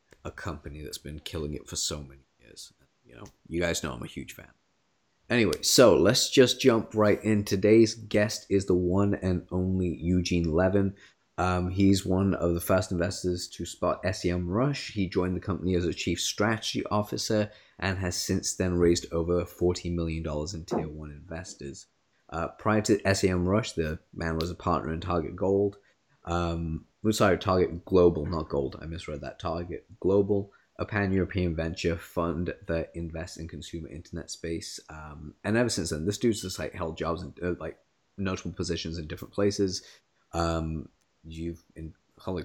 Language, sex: English, male